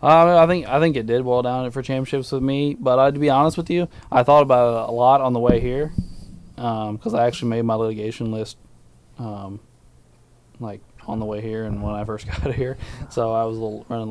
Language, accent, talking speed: English, American, 240 wpm